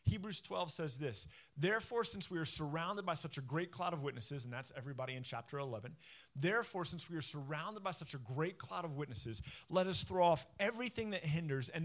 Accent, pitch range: American, 145-195 Hz